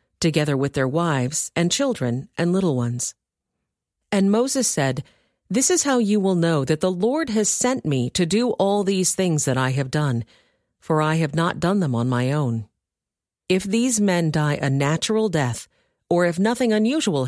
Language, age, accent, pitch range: English, 40-59, American, 145-205 Hz